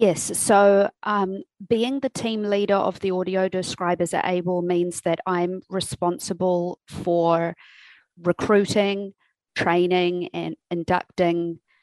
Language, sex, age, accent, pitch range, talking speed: English, female, 40-59, Australian, 170-200 Hz, 110 wpm